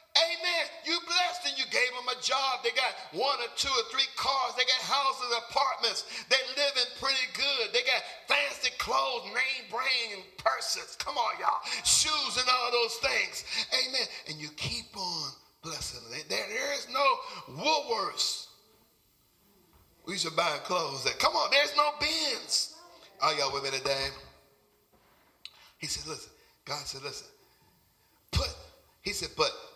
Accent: American